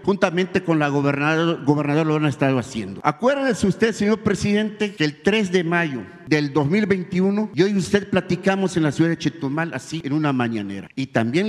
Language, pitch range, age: Spanish, 160-205 Hz, 50-69